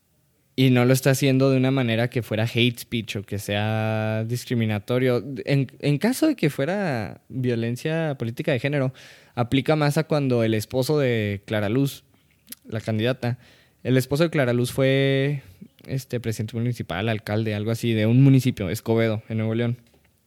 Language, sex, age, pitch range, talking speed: Spanish, male, 20-39, 115-135 Hz, 165 wpm